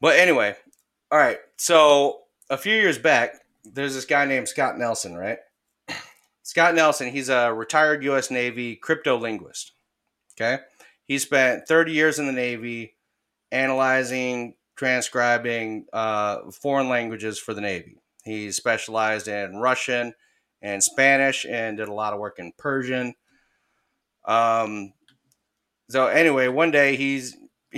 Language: English